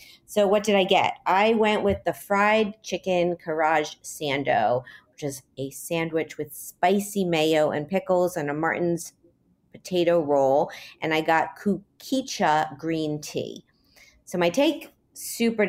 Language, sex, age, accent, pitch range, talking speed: English, female, 40-59, American, 150-200 Hz, 140 wpm